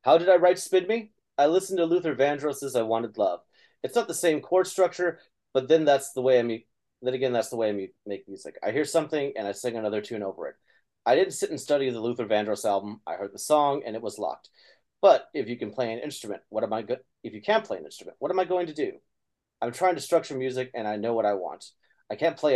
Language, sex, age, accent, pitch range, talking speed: English, male, 30-49, American, 120-175 Hz, 265 wpm